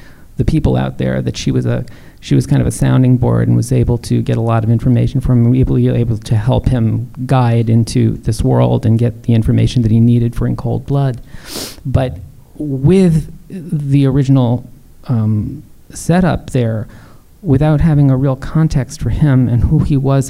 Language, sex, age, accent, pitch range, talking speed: English, male, 40-59, American, 115-135 Hz, 190 wpm